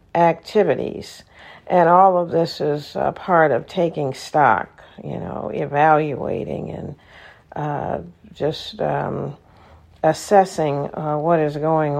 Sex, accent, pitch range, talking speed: female, American, 155-205 Hz, 115 wpm